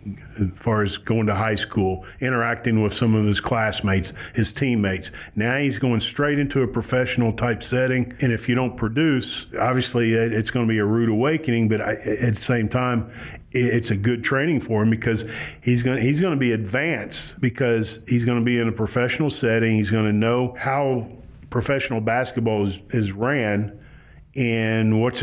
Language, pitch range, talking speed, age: English, 110-125 Hz, 180 wpm, 40-59